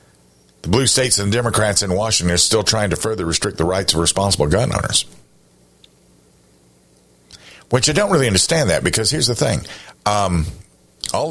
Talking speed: 165 wpm